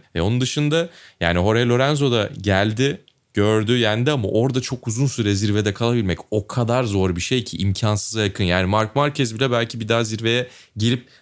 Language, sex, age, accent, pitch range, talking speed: Turkish, male, 30-49, native, 95-120 Hz, 180 wpm